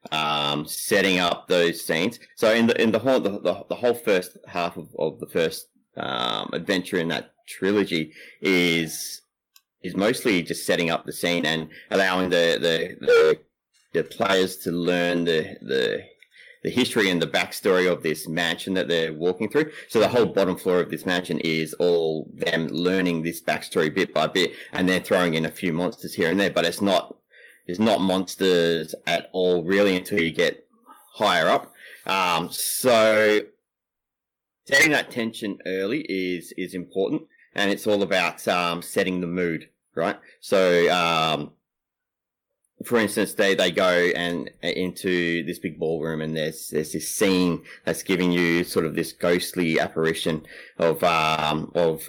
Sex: male